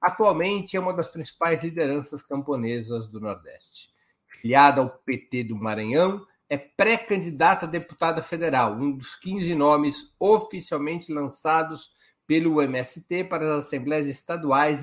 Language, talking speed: Portuguese, 125 wpm